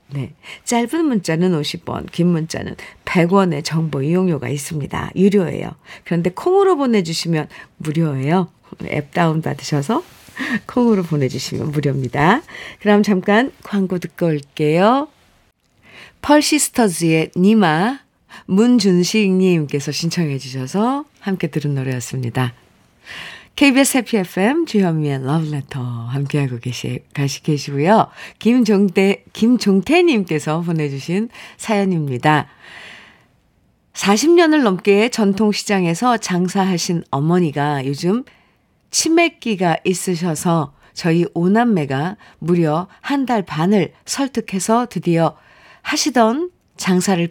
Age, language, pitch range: 50-69, Korean, 150-215 Hz